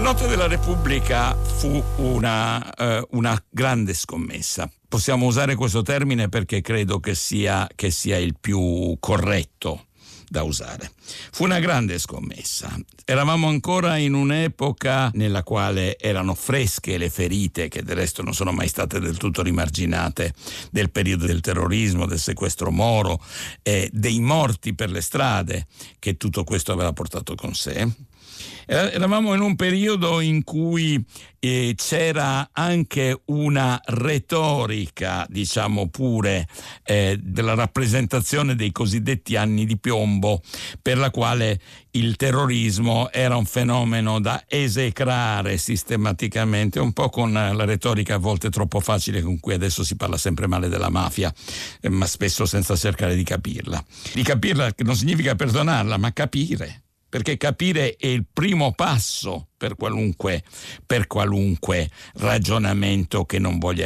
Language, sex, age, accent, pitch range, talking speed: Italian, male, 60-79, native, 95-130 Hz, 135 wpm